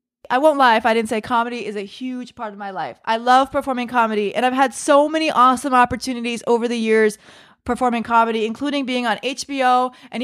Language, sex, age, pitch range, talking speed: English, female, 20-39, 230-270 Hz, 210 wpm